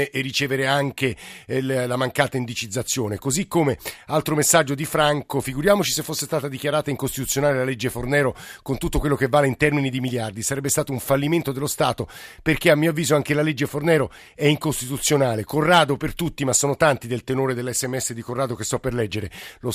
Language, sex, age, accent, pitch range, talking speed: Italian, male, 50-69, native, 125-150 Hz, 190 wpm